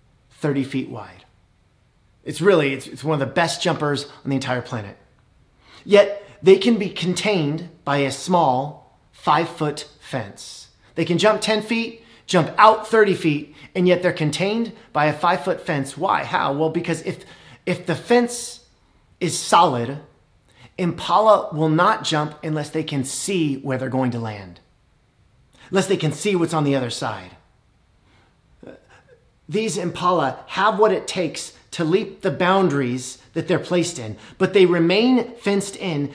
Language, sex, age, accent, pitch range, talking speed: English, male, 30-49, American, 135-185 Hz, 160 wpm